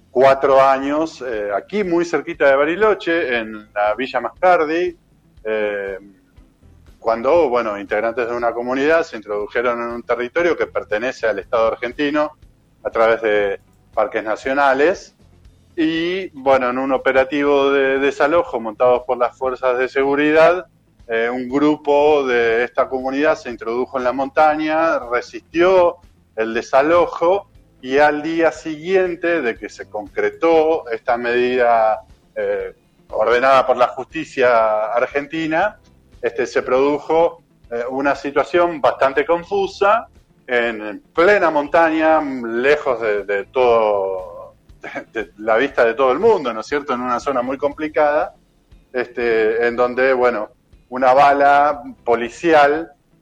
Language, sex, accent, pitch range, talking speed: Spanish, male, Argentinian, 120-160 Hz, 130 wpm